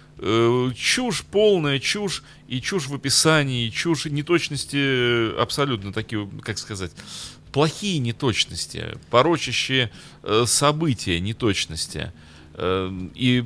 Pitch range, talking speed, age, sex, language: 100-145 Hz, 95 wpm, 30-49, male, Russian